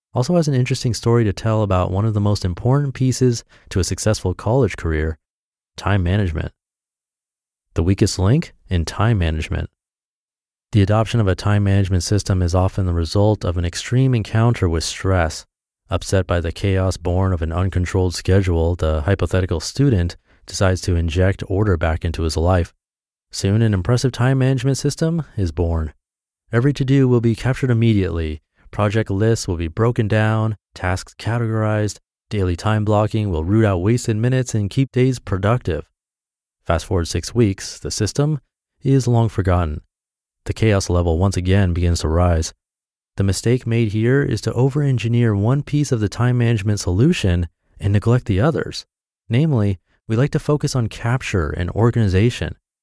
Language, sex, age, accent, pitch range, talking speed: English, male, 30-49, American, 90-120 Hz, 160 wpm